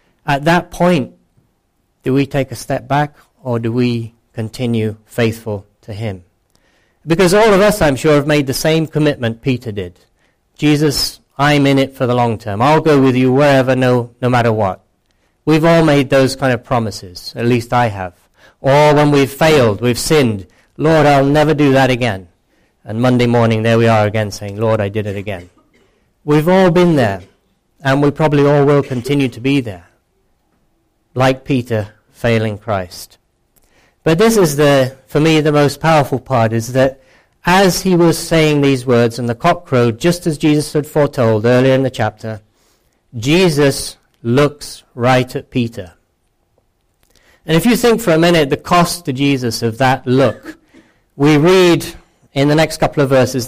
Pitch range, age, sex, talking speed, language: 115-150 Hz, 40-59, male, 175 wpm, English